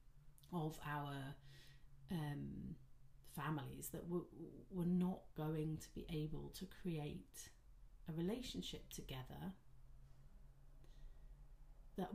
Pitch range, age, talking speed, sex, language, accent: 135-185 Hz, 40-59, 90 wpm, female, English, British